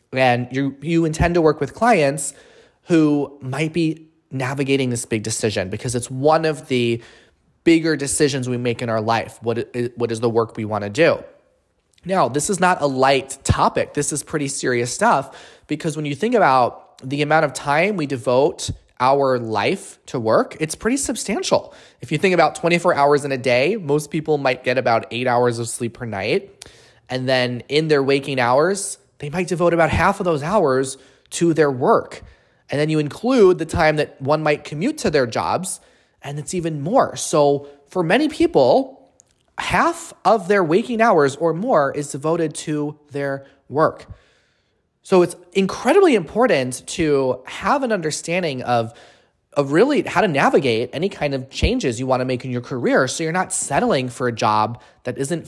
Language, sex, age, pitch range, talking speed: English, male, 20-39, 125-165 Hz, 185 wpm